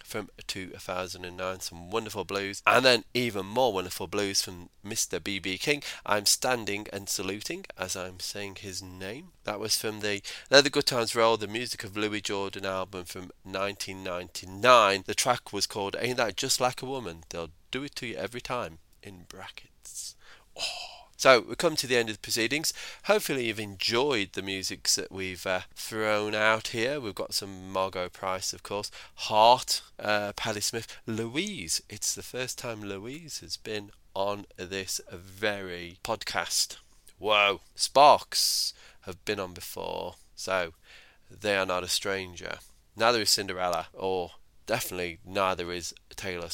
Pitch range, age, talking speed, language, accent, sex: 95-115 Hz, 30-49, 160 wpm, English, British, male